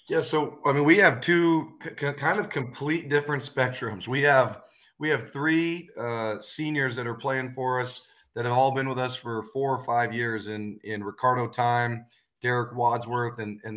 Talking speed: 190 wpm